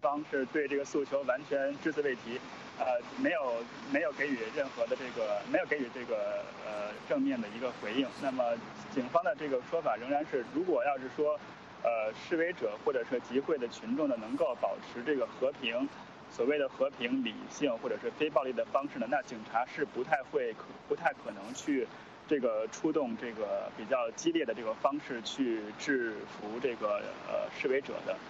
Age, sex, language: 20-39, male, English